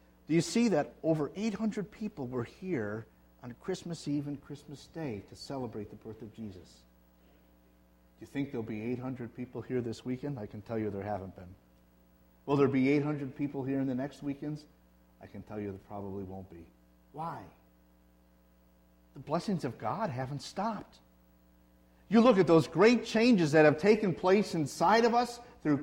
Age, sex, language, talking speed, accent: 50-69, male, English, 180 wpm, American